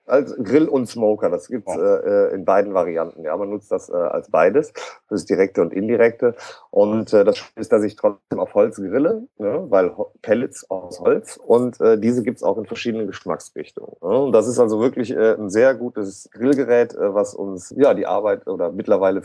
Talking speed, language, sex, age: 205 wpm, German, male, 30-49